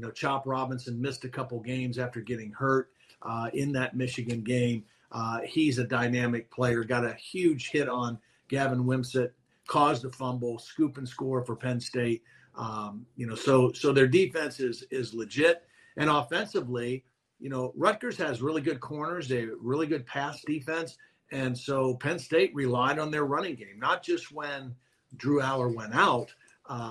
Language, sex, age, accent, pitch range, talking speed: English, male, 50-69, American, 125-150 Hz, 175 wpm